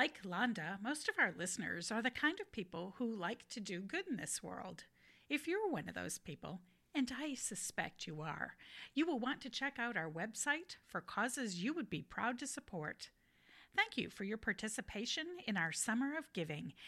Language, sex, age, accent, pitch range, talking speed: English, female, 50-69, American, 180-265 Hz, 200 wpm